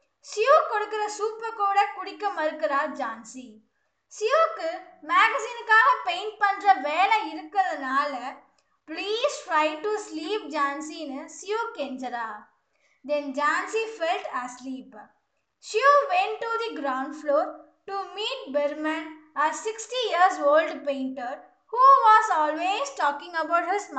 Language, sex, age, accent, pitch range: Tamil, female, 20-39, native, 280-390 Hz